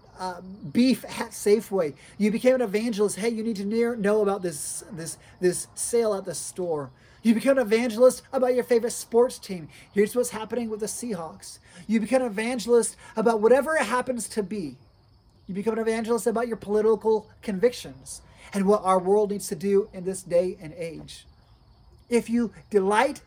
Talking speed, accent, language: 175 wpm, American, English